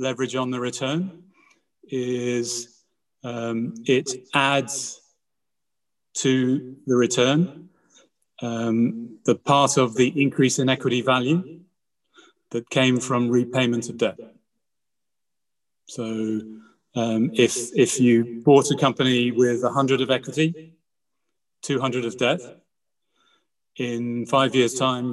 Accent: British